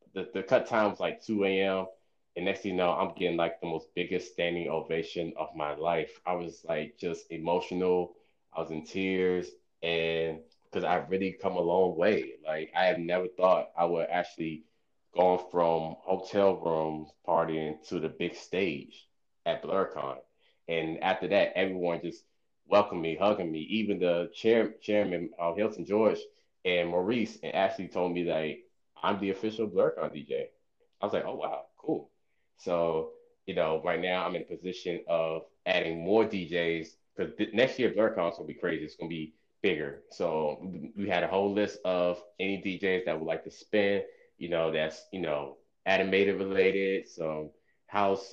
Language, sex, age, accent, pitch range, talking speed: English, male, 20-39, American, 85-100 Hz, 180 wpm